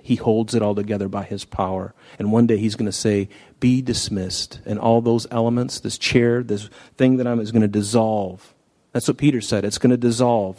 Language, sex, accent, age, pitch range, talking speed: English, male, American, 40-59, 105-130 Hz, 220 wpm